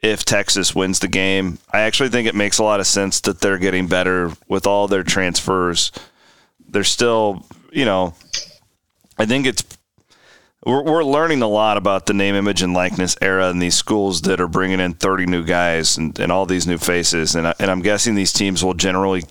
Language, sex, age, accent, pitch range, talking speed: English, male, 30-49, American, 95-120 Hz, 200 wpm